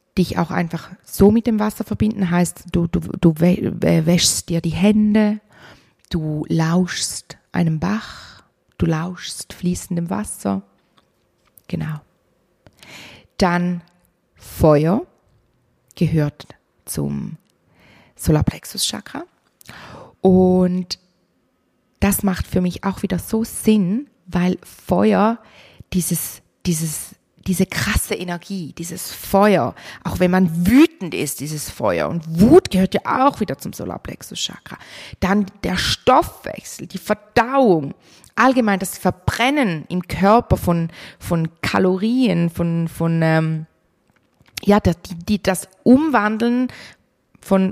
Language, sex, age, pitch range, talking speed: German, female, 30-49, 170-210 Hz, 105 wpm